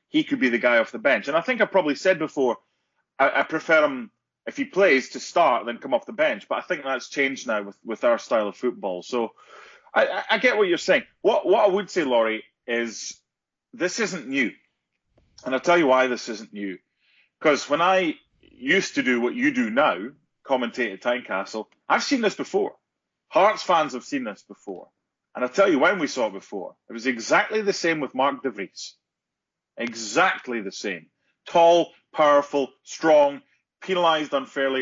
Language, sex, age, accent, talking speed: English, male, 30-49, British, 200 wpm